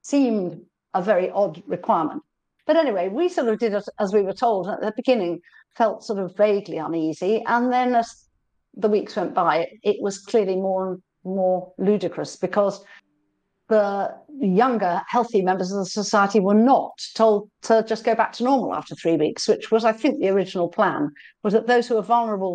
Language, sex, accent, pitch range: English, female, British, 185-235 Hz